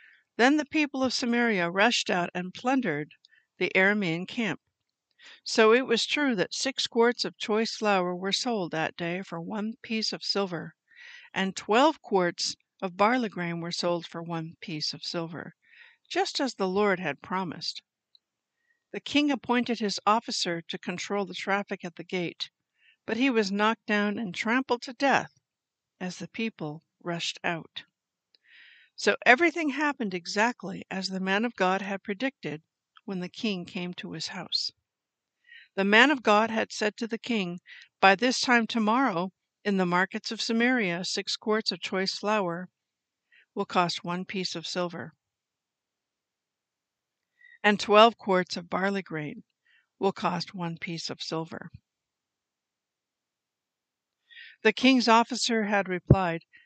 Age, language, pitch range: 60-79, English, 180-240 Hz